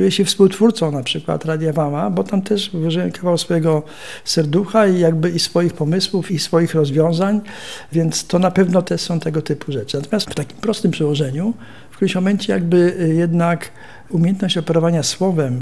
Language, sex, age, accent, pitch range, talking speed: Polish, male, 50-69, native, 150-185 Hz, 170 wpm